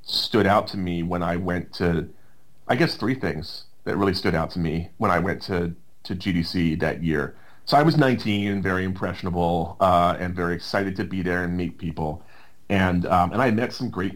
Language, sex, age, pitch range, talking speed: English, male, 30-49, 85-105 Hz, 210 wpm